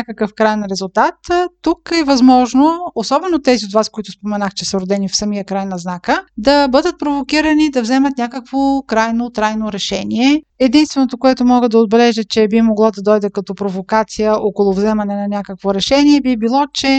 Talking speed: 175 wpm